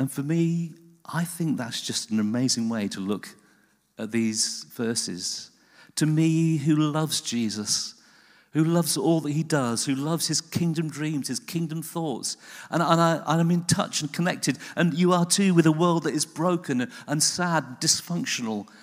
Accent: British